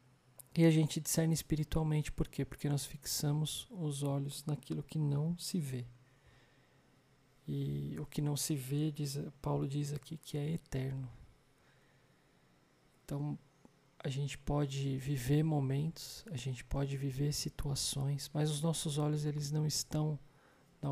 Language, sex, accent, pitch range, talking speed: Portuguese, male, Brazilian, 135-150 Hz, 135 wpm